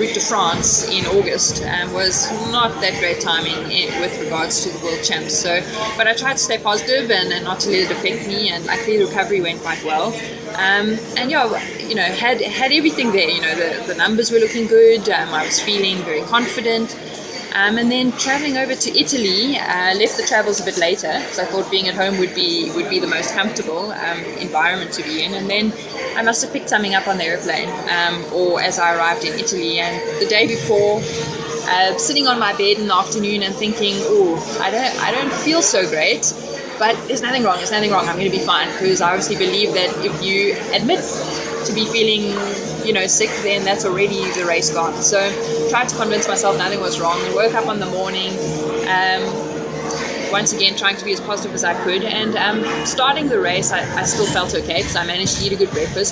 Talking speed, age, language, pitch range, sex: 225 wpm, 20-39, English, 185-240 Hz, female